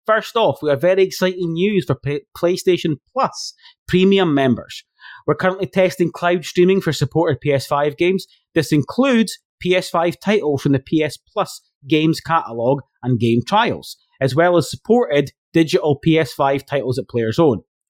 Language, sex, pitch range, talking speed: English, male, 135-185 Hz, 150 wpm